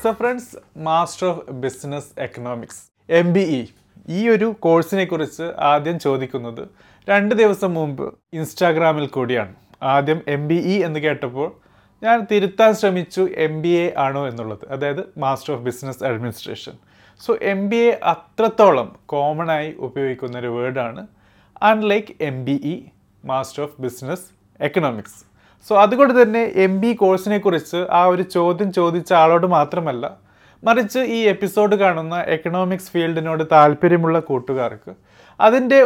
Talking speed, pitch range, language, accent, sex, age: 120 wpm, 140-195 Hz, Malayalam, native, male, 30-49